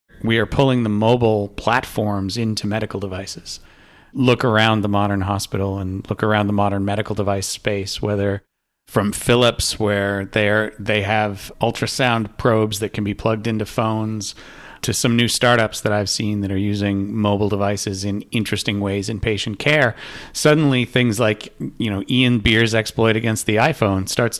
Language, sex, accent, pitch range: English, male, American, 100-120 Hz